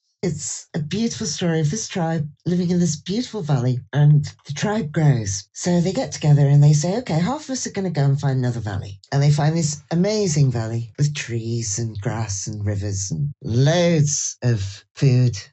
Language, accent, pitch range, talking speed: English, British, 125-160 Hz, 195 wpm